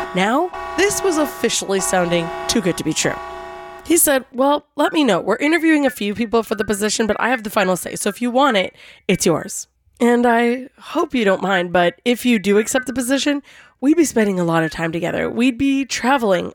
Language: English